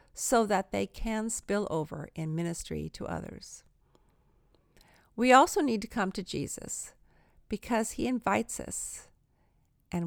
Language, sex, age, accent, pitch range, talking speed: English, female, 50-69, American, 160-220 Hz, 130 wpm